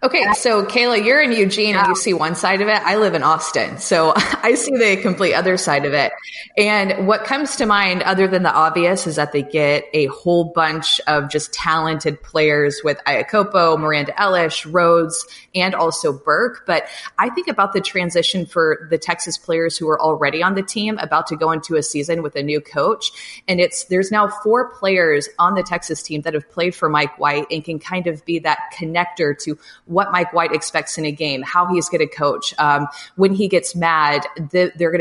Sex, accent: female, American